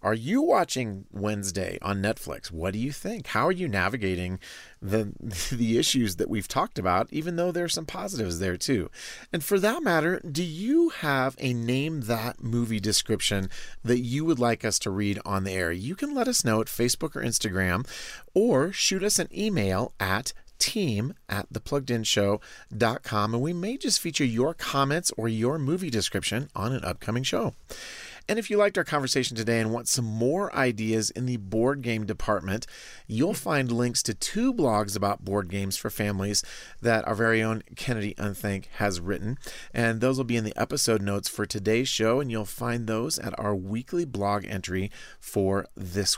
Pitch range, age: 105-135 Hz, 40-59